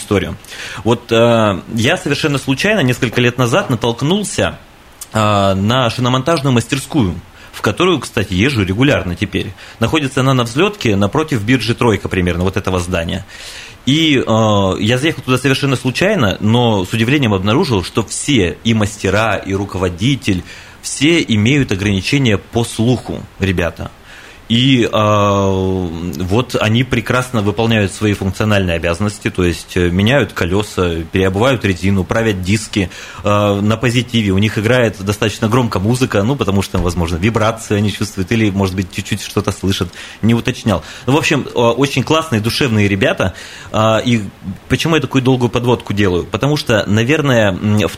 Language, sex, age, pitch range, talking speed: Russian, male, 30-49, 100-125 Hz, 140 wpm